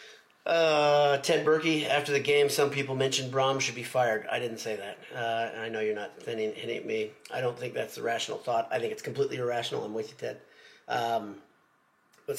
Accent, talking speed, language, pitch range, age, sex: American, 210 wpm, English, 115-140 Hz, 30-49, male